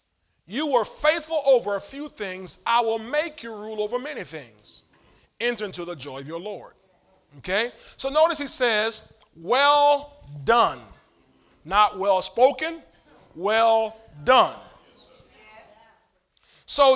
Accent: American